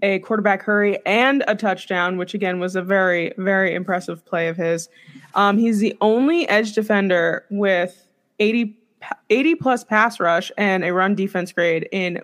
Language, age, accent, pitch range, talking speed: English, 20-39, American, 185-230 Hz, 165 wpm